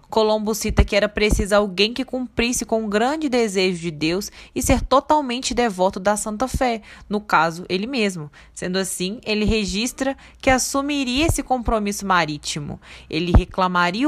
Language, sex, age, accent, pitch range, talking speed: Portuguese, female, 20-39, Brazilian, 165-225 Hz, 155 wpm